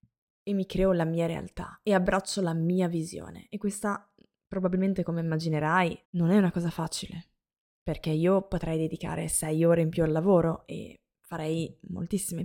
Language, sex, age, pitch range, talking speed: Italian, female, 20-39, 165-190 Hz, 165 wpm